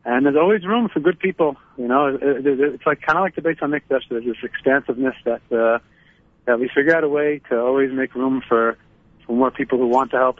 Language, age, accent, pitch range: English, 30-49, American, 120-135 Hz